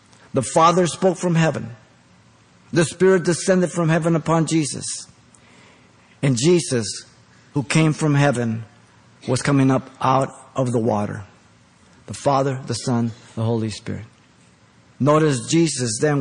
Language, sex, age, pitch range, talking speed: English, male, 50-69, 130-175 Hz, 130 wpm